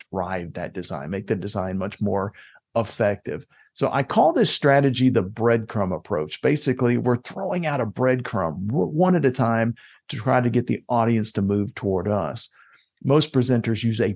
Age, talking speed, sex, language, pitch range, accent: 50-69, 170 wpm, male, English, 105-145 Hz, American